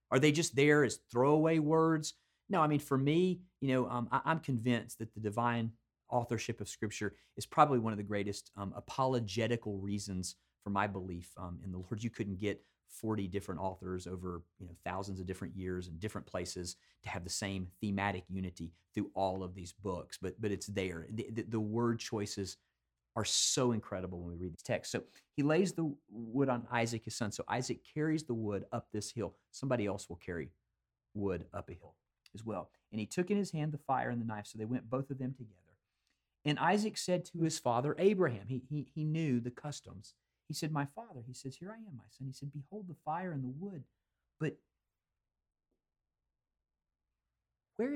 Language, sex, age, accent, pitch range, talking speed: English, male, 40-59, American, 95-135 Hz, 205 wpm